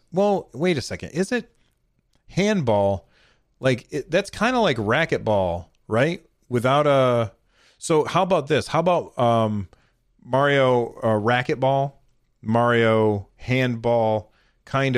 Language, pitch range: English, 110-135 Hz